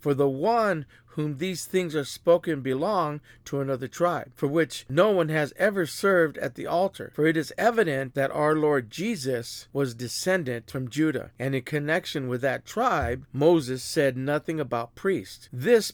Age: 50-69